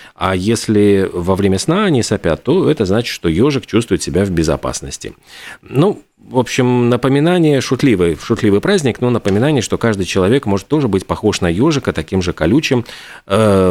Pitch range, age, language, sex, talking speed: 90-120 Hz, 30-49, Russian, male, 165 wpm